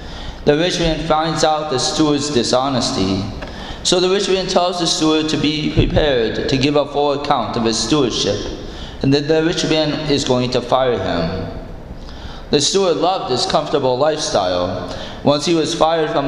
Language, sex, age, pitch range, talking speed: English, male, 20-39, 110-155 Hz, 175 wpm